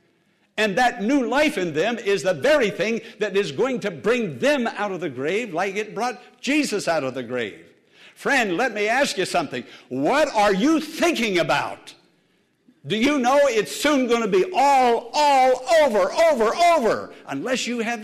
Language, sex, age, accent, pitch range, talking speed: English, male, 60-79, American, 200-275 Hz, 185 wpm